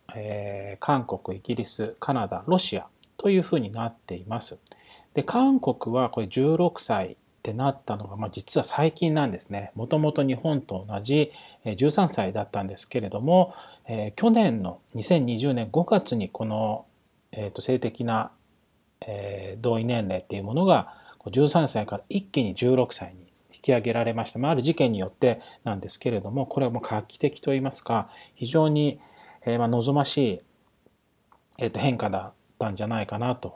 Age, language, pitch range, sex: 40-59, Japanese, 110-150 Hz, male